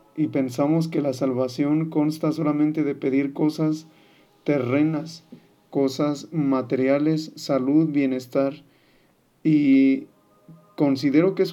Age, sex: 40-59, male